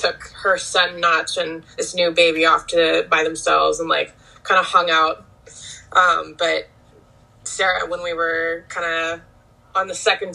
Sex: female